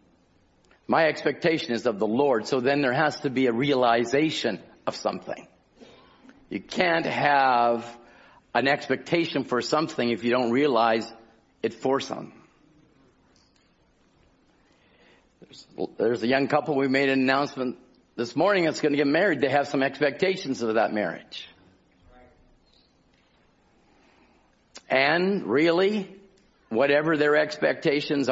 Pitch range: 120-155 Hz